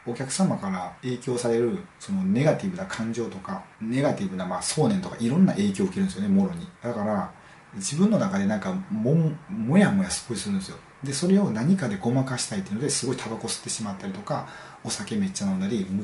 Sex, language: male, Japanese